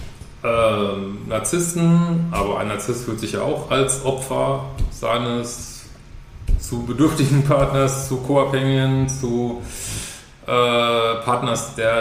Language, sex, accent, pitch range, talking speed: German, male, German, 115-135 Hz, 105 wpm